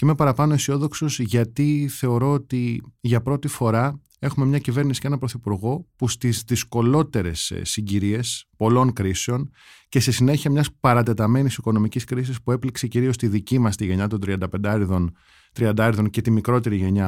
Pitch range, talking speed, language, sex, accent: 110-140 Hz, 150 wpm, Greek, male, native